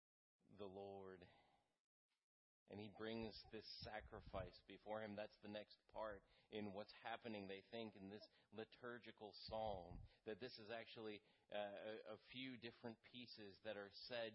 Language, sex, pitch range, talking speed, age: English, male, 105-125 Hz, 140 wpm, 30-49